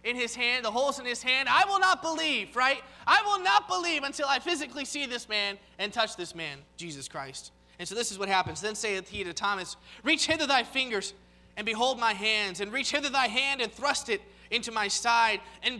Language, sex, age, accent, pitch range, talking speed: English, male, 20-39, American, 215-295 Hz, 230 wpm